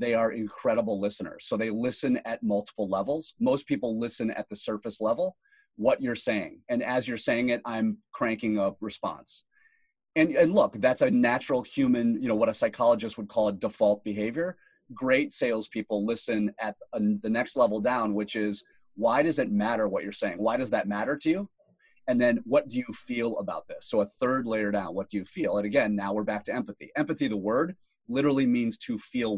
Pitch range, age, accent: 110-180 Hz, 30-49, American